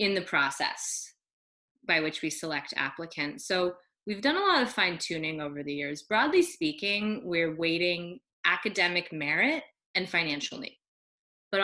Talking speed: 150 wpm